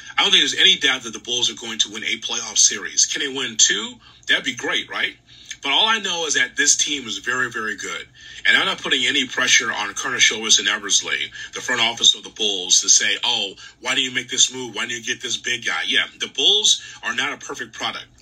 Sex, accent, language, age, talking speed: male, American, English, 30-49, 255 wpm